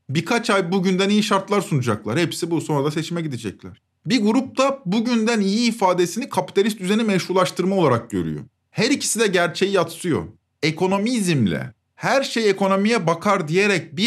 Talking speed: 145 wpm